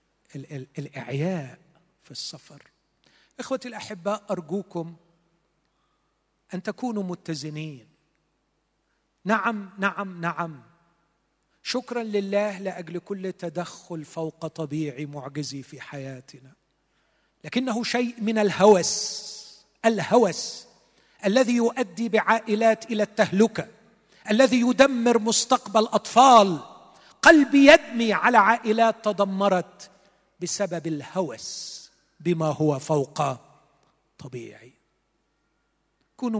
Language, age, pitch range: Arabic, 40-59, 160-220 Hz